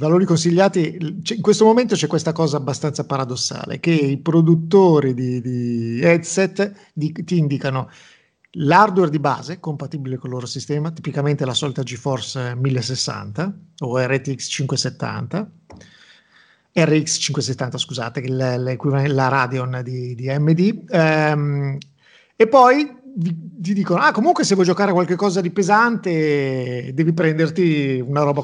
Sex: male